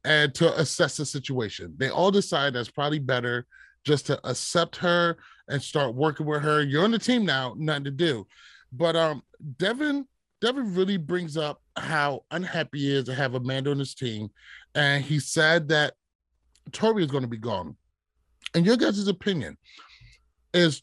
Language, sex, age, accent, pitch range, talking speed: English, male, 30-49, American, 135-180 Hz, 175 wpm